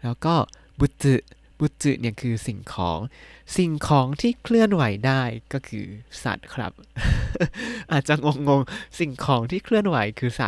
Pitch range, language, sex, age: 105-145 Hz, Thai, male, 20-39